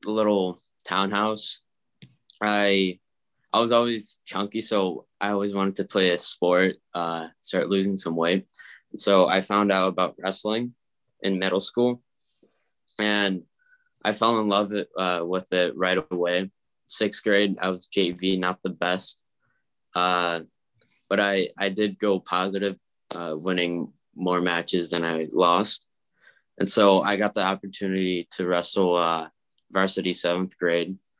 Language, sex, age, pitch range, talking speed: English, male, 10-29, 90-100 Hz, 140 wpm